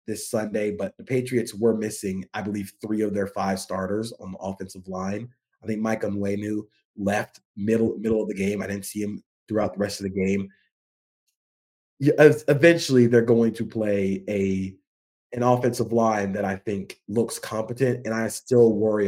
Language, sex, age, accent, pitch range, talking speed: English, male, 30-49, American, 100-130 Hz, 175 wpm